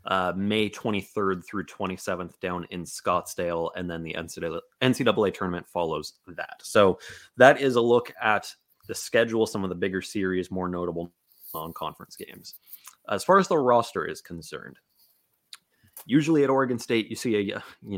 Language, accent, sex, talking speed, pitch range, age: English, American, male, 160 wpm, 90-110 Hz, 30-49